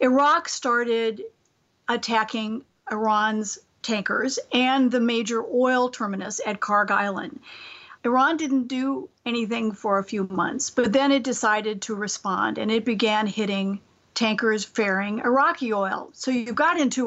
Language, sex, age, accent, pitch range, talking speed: English, female, 50-69, American, 215-255 Hz, 135 wpm